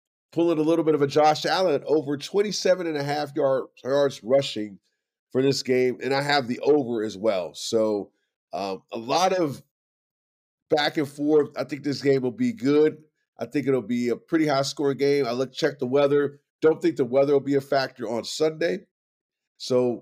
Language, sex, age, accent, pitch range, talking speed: English, male, 40-59, American, 125-155 Hz, 195 wpm